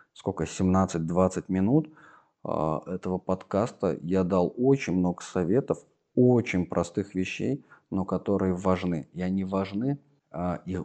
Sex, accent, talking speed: male, native, 110 wpm